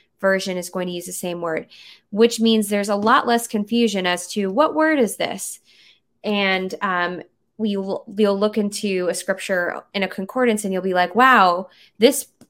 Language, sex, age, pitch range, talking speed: English, female, 20-39, 180-225 Hz, 185 wpm